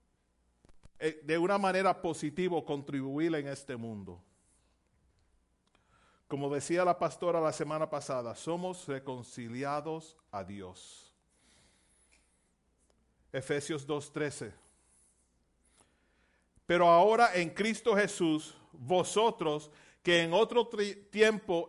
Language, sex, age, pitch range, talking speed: Spanish, male, 40-59, 145-200 Hz, 85 wpm